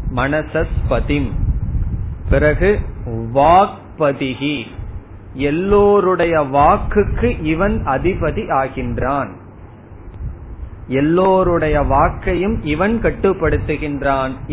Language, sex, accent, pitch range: Tamil, male, native, 125-165 Hz